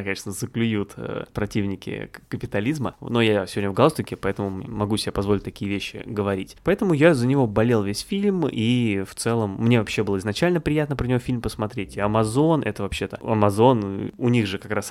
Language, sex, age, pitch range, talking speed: Russian, male, 20-39, 105-130 Hz, 175 wpm